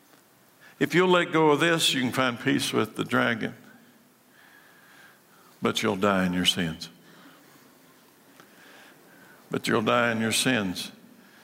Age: 60-79